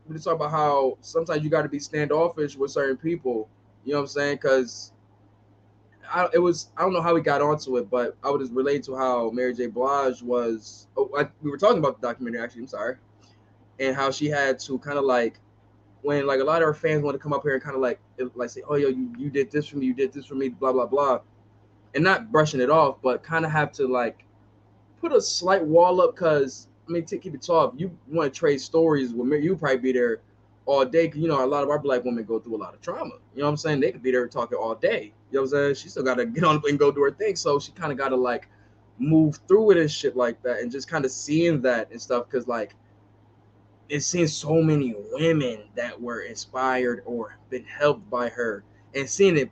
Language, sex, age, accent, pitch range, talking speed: English, male, 10-29, American, 115-150 Hz, 260 wpm